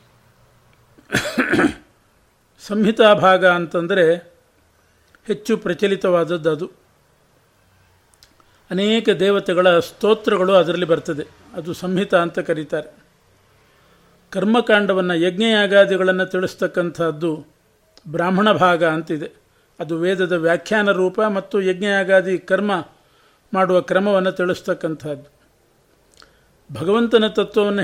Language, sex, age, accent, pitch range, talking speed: Kannada, male, 50-69, native, 160-195 Hz, 70 wpm